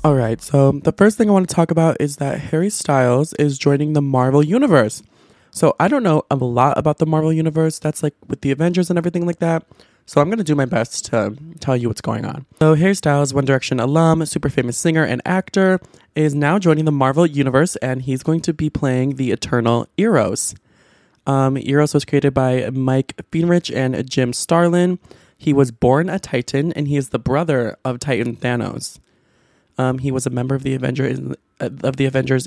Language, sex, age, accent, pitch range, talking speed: English, male, 20-39, American, 125-155 Hz, 205 wpm